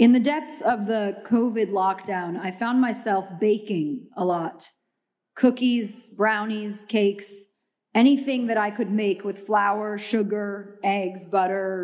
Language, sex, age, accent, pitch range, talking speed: English, female, 30-49, American, 200-240 Hz, 130 wpm